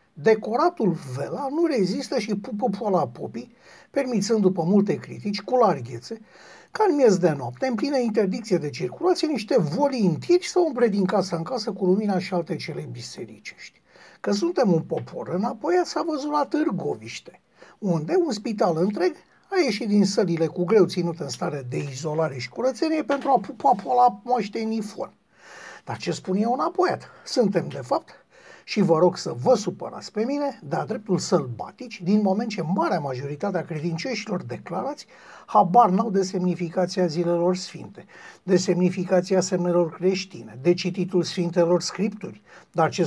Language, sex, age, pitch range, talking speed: Romanian, male, 60-79, 175-240 Hz, 160 wpm